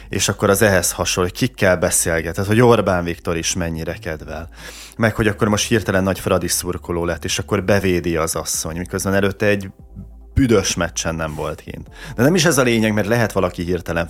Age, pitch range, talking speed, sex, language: 30-49, 90-110 Hz, 195 wpm, male, Hungarian